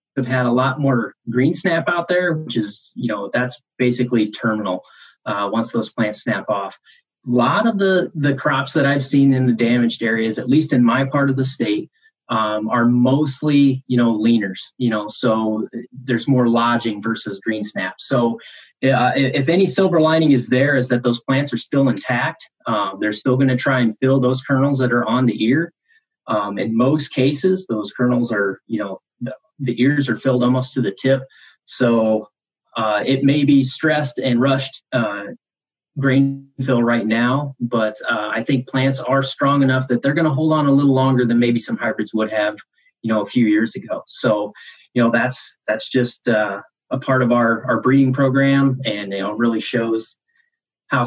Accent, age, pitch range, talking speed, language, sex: American, 30-49, 115-140 Hz, 195 wpm, English, male